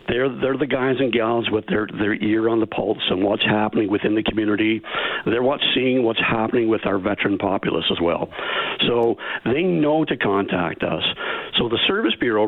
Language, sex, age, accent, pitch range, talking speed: English, male, 60-79, American, 110-150 Hz, 190 wpm